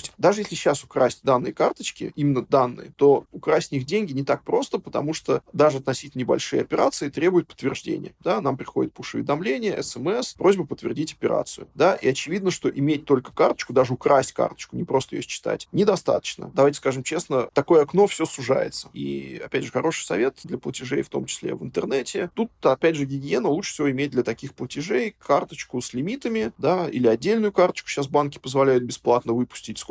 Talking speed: 175 wpm